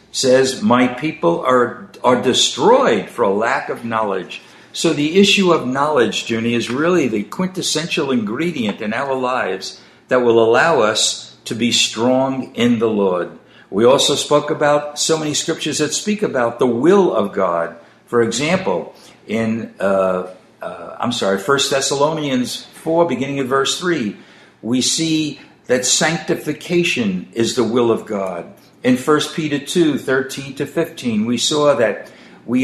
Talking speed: 155 wpm